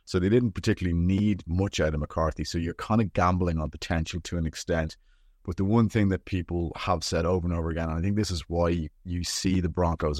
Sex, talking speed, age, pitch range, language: male, 240 wpm, 30-49, 75-90 Hz, English